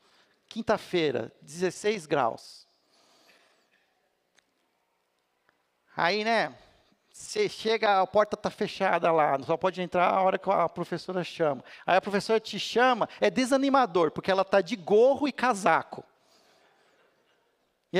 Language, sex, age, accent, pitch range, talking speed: Portuguese, male, 50-69, Brazilian, 160-240 Hz, 125 wpm